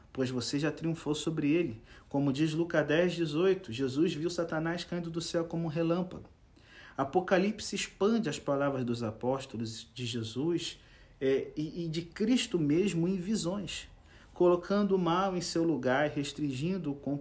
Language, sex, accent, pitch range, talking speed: Portuguese, male, Brazilian, 130-175 Hz, 155 wpm